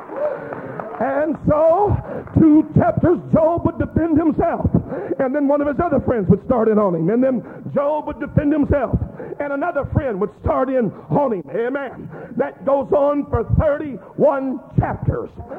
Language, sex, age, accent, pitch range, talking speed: English, male, 50-69, American, 245-295 Hz, 160 wpm